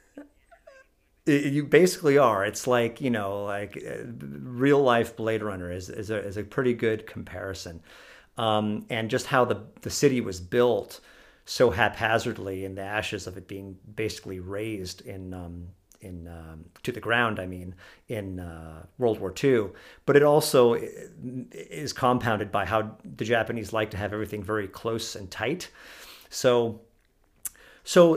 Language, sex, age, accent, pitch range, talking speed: English, male, 40-59, American, 100-130 Hz, 155 wpm